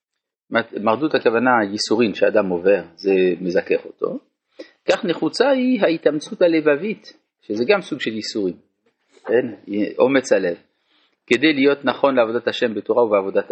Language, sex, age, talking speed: Hebrew, male, 40-59, 125 wpm